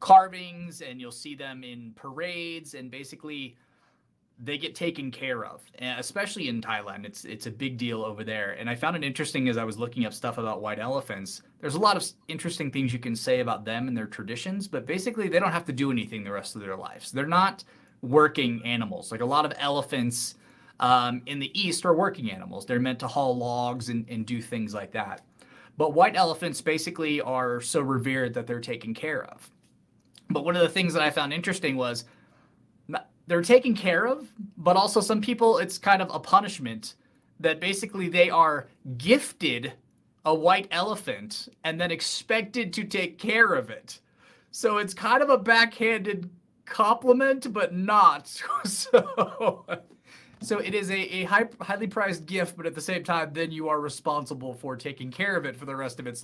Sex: male